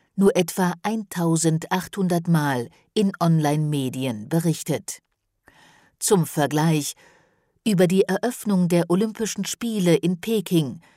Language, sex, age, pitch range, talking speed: German, female, 50-69, 155-190 Hz, 95 wpm